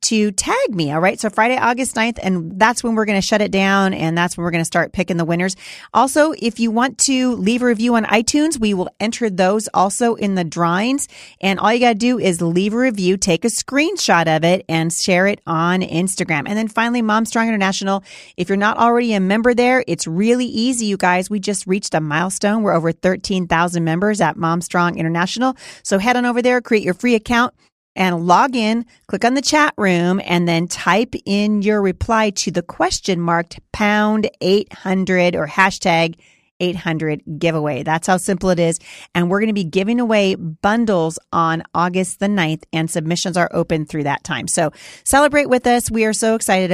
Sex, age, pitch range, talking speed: female, 30-49, 175-225 Hz, 200 wpm